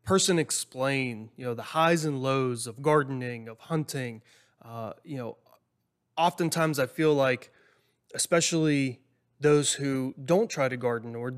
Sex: male